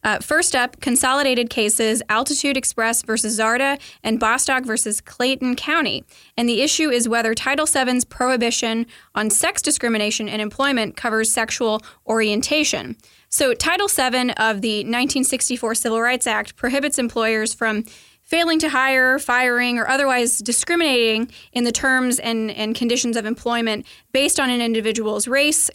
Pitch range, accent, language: 225-265 Hz, American, English